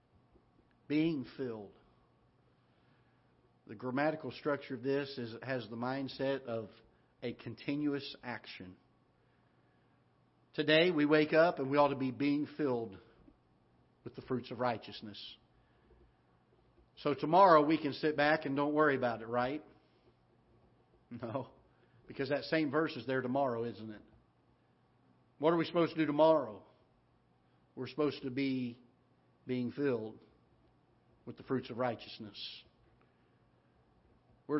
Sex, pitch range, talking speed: male, 120-150 Hz, 125 wpm